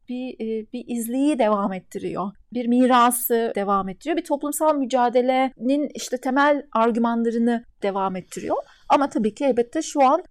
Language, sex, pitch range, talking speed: Turkish, female, 205-255 Hz, 135 wpm